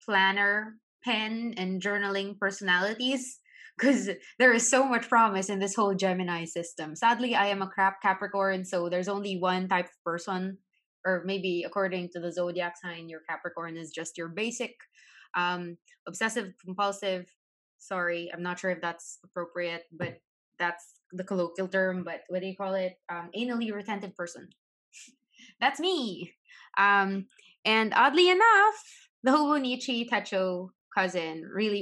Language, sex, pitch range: English, female, 185-235 Hz